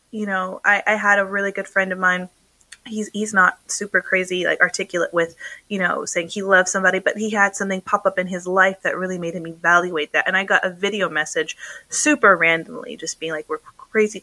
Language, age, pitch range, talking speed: English, 20-39, 180-220 Hz, 225 wpm